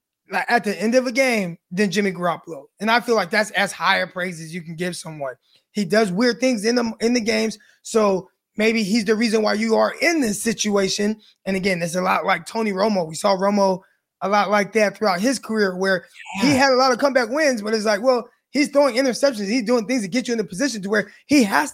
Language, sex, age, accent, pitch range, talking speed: English, male, 20-39, American, 190-235 Hz, 250 wpm